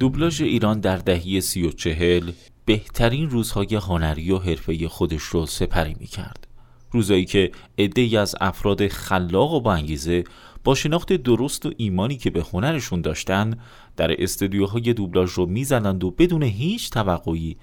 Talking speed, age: 140 wpm, 30-49